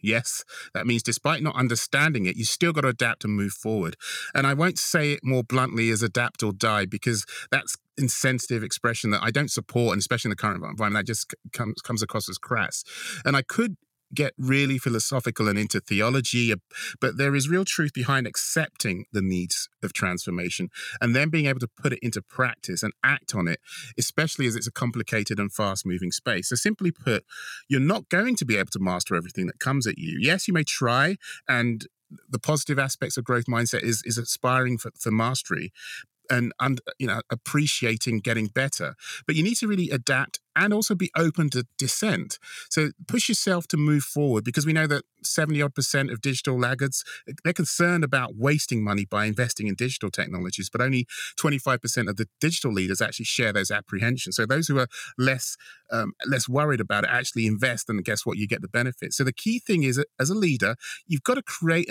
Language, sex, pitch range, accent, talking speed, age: English, male, 115-150 Hz, British, 200 wpm, 40-59